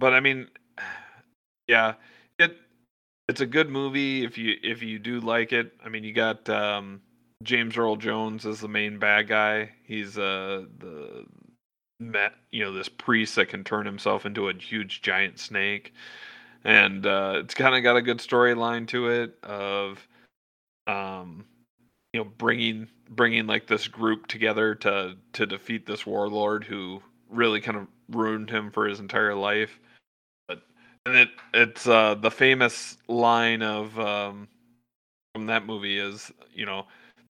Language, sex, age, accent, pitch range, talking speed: English, male, 30-49, American, 100-115 Hz, 155 wpm